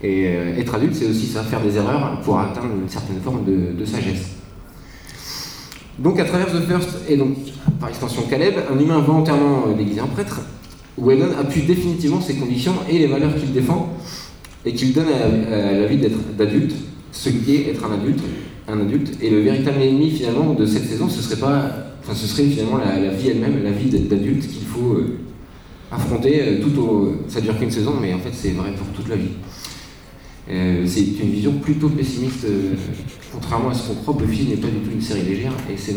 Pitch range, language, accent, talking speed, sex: 100-140 Hz, French, French, 205 wpm, male